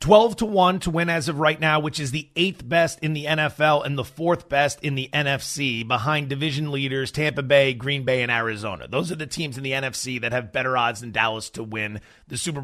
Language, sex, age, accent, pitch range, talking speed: English, male, 30-49, American, 130-175 Hz, 230 wpm